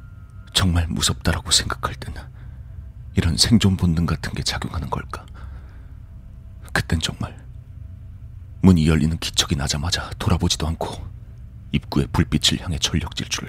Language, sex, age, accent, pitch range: Korean, male, 40-59, native, 80-105 Hz